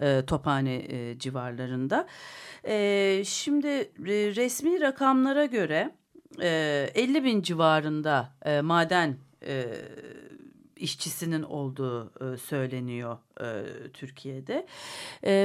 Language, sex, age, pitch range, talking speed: Turkish, female, 40-59, 160-235 Hz, 90 wpm